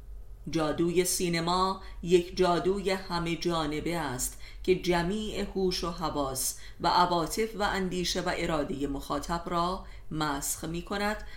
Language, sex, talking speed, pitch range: Persian, female, 120 wpm, 155-185 Hz